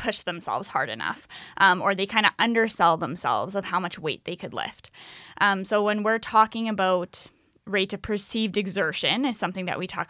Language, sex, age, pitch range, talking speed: English, female, 10-29, 185-215 Hz, 195 wpm